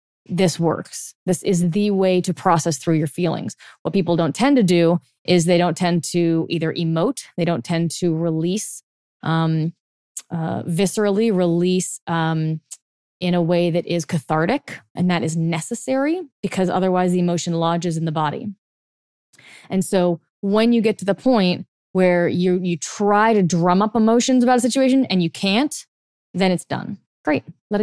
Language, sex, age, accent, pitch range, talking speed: English, female, 20-39, American, 165-195 Hz, 170 wpm